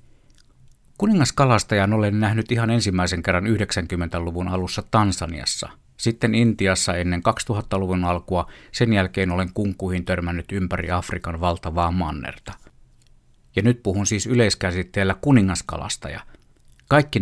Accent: native